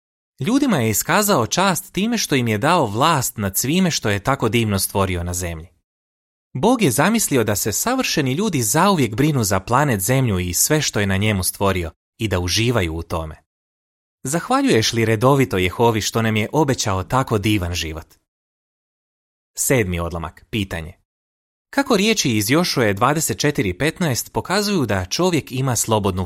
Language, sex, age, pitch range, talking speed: Croatian, male, 30-49, 90-135 Hz, 155 wpm